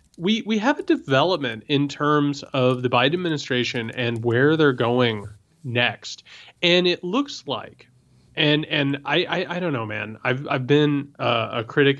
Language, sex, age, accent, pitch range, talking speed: English, male, 30-49, American, 125-160 Hz, 170 wpm